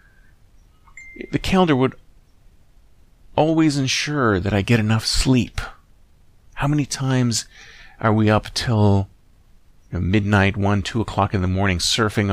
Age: 40-59